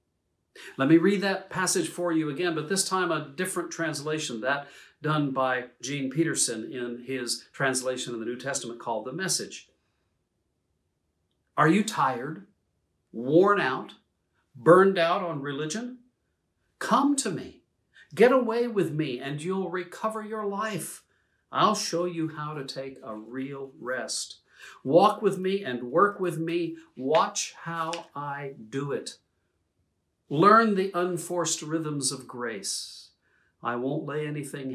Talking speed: 140 wpm